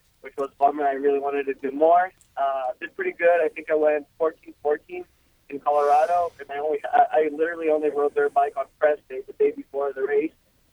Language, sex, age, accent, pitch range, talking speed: English, male, 20-39, American, 145-240 Hz, 215 wpm